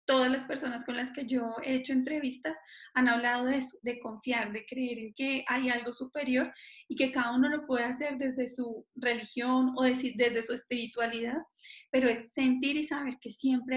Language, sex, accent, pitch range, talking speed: Spanish, female, Colombian, 245-280 Hz, 190 wpm